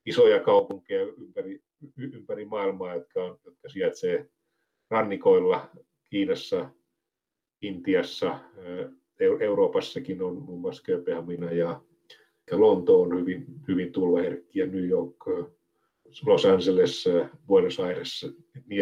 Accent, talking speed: native, 95 wpm